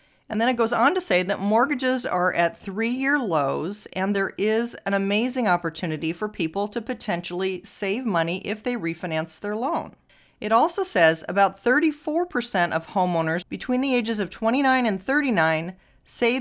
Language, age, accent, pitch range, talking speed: English, 40-59, American, 185-245 Hz, 165 wpm